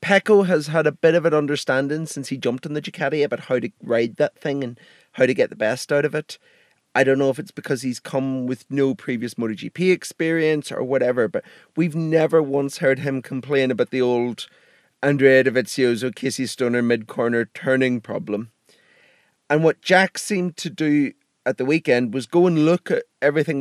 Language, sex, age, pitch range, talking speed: English, male, 30-49, 135-165 Hz, 195 wpm